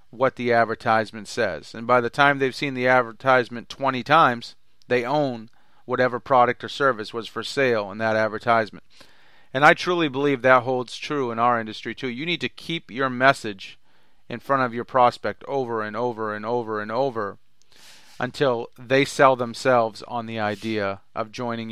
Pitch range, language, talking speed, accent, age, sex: 110-135 Hz, English, 175 wpm, American, 40-59, male